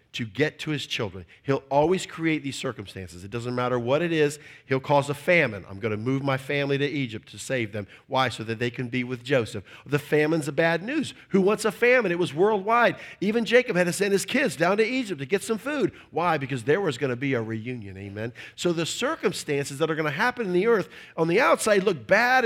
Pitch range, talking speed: 120-185 Hz, 245 wpm